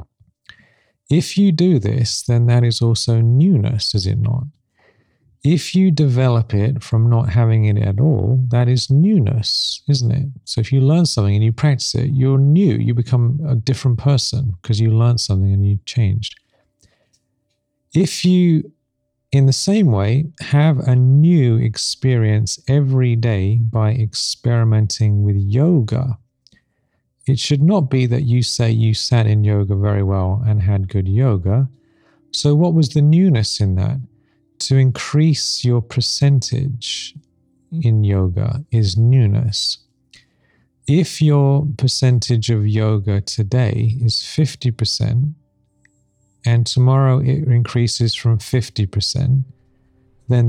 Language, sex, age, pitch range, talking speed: English, male, 40-59, 110-135 Hz, 135 wpm